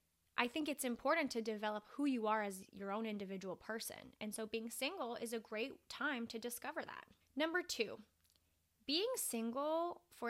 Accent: American